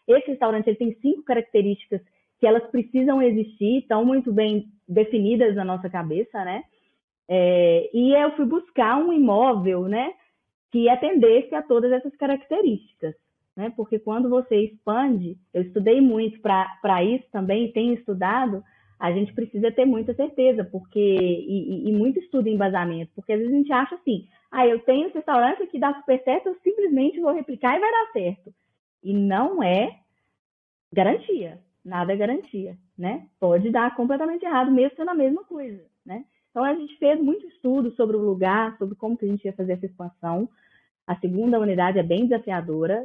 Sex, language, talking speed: female, Portuguese, 175 wpm